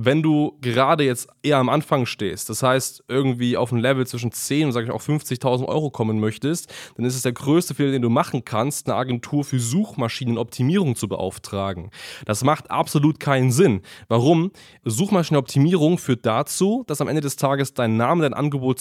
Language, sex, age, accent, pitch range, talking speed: German, male, 20-39, German, 125-145 Hz, 185 wpm